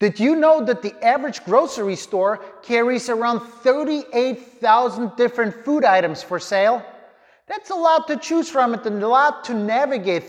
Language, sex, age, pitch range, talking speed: English, male, 30-49, 200-255 Hz, 155 wpm